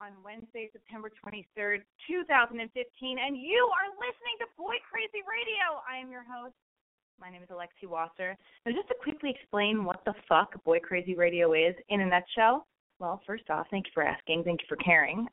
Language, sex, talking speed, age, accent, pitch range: English, female, 190 wpm, 20-39, American, 195-295 Hz